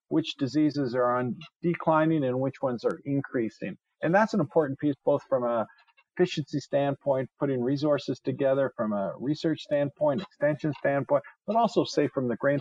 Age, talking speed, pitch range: 50-69, 165 wpm, 125-150 Hz